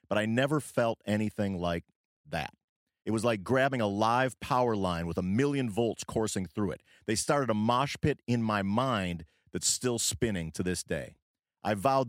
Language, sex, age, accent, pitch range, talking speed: English, male, 40-59, American, 95-125 Hz, 190 wpm